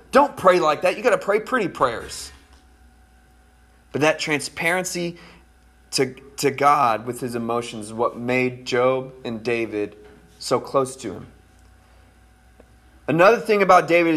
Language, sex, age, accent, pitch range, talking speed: English, male, 20-39, American, 110-160 Hz, 140 wpm